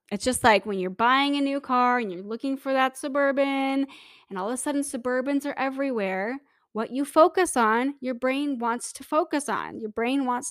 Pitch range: 220-275 Hz